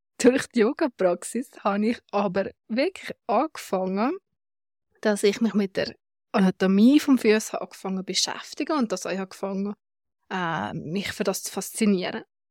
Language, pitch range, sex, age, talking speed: German, 195-240 Hz, female, 20-39, 125 wpm